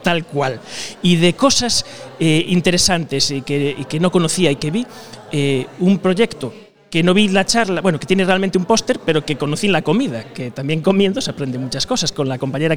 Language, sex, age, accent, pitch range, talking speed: Spanish, male, 30-49, Spanish, 145-190 Hz, 210 wpm